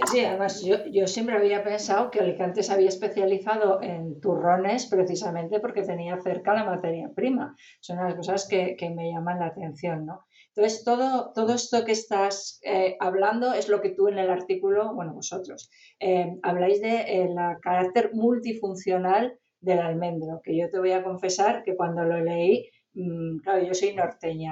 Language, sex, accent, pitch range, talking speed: English, female, Spanish, 175-210 Hz, 170 wpm